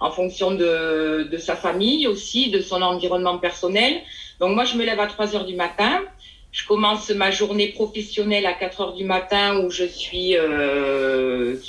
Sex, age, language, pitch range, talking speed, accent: female, 30-49, French, 180-215 Hz, 170 wpm, French